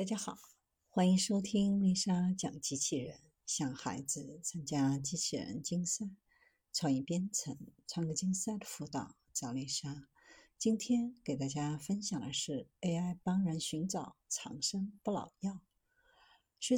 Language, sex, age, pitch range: Chinese, female, 50-69, 150-220 Hz